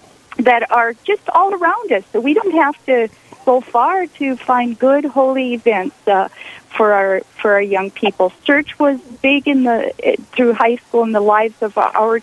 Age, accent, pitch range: 50-69, American, 220-275 Hz